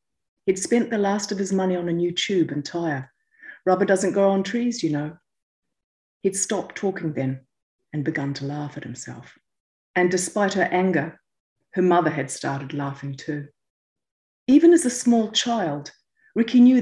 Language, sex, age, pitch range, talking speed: English, female, 40-59, 150-210 Hz, 170 wpm